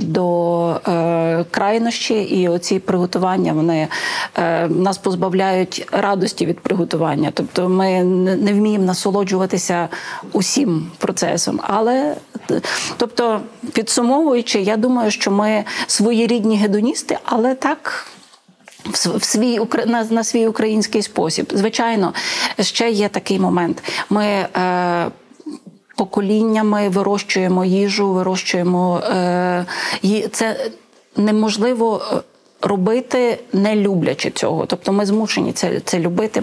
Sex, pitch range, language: female, 180-220 Hz, Ukrainian